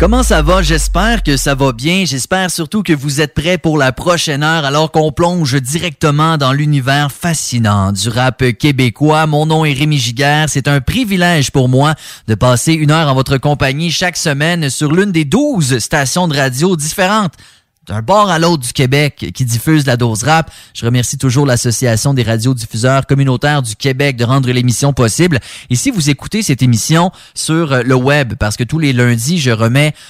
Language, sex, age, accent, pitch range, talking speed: English, male, 30-49, Canadian, 125-165 Hz, 190 wpm